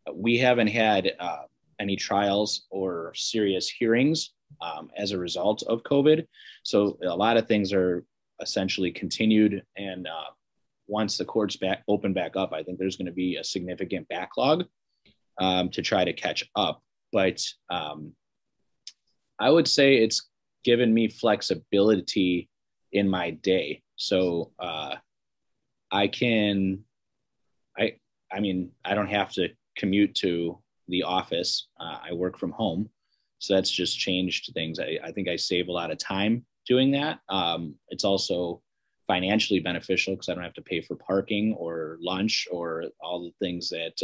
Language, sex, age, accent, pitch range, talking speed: English, male, 30-49, American, 90-110 Hz, 155 wpm